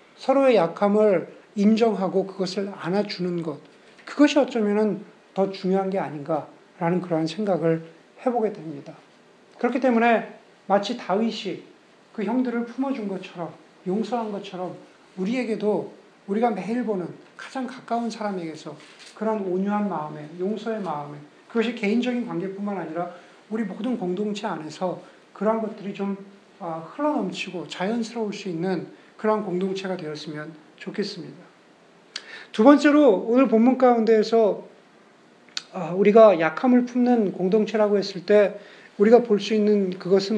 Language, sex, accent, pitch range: Korean, male, native, 180-230 Hz